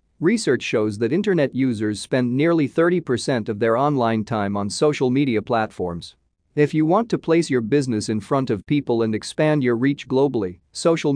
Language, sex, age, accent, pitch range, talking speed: English, male, 40-59, American, 105-145 Hz, 185 wpm